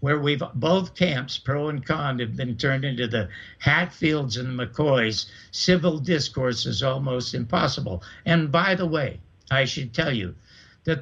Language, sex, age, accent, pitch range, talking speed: English, male, 60-79, American, 130-170 Hz, 150 wpm